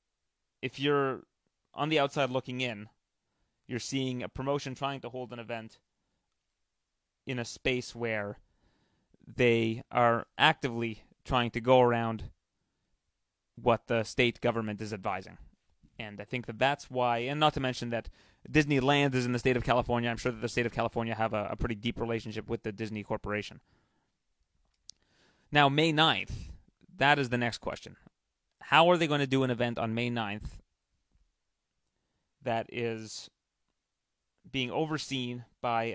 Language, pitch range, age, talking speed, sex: English, 110-130 Hz, 30-49, 155 wpm, male